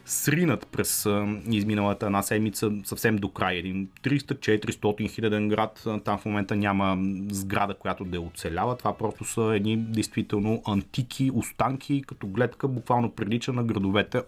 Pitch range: 100-130 Hz